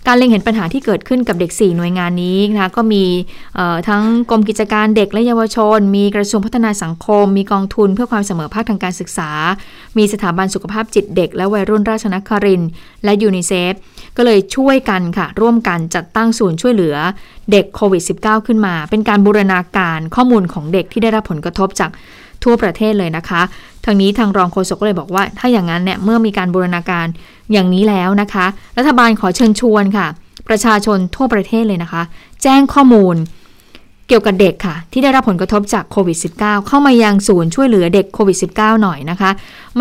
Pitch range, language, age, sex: 185-225 Hz, Thai, 20-39, female